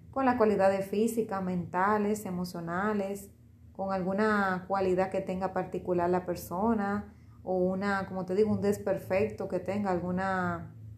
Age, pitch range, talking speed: 30-49, 175-215 Hz, 130 wpm